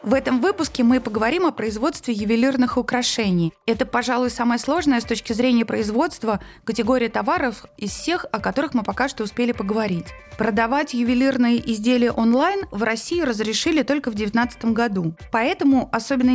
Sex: female